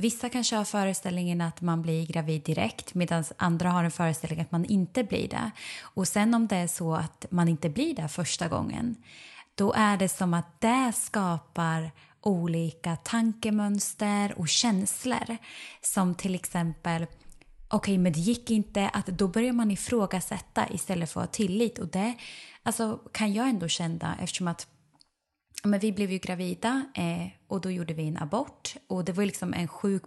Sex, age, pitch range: female, 20-39, 165-210 Hz